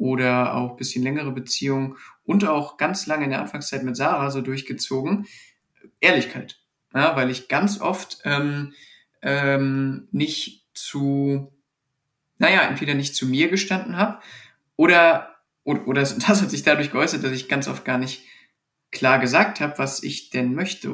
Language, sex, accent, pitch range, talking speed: German, male, German, 130-155 Hz, 160 wpm